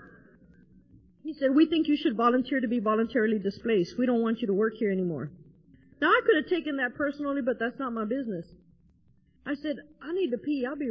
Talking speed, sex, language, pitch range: 215 wpm, female, English, 255-325 Hz